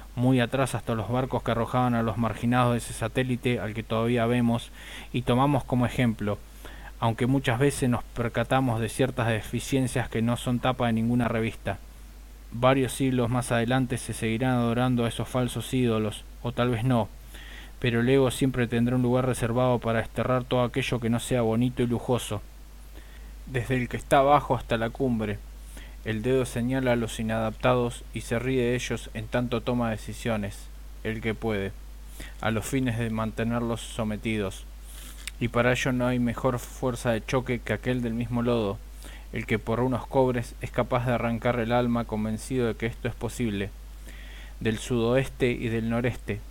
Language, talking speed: Spanish, 175 wpm